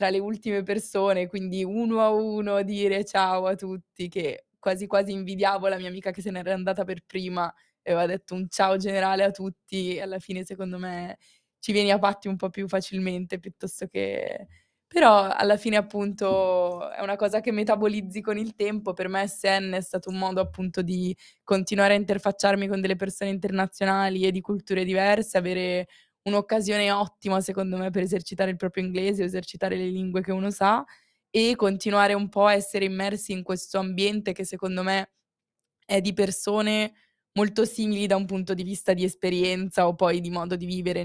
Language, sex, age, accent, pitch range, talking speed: Italian, female, 20-39, native, 185-200 Hz, 185 wpm